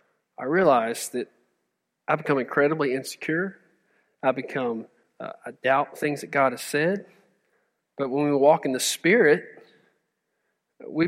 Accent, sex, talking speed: American, male, 135 wpm